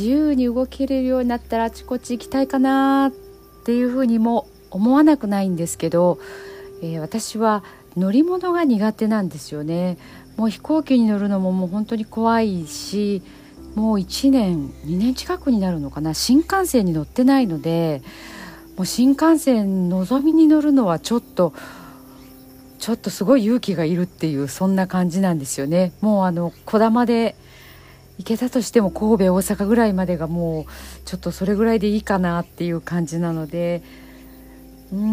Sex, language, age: female, Japanese, 50-69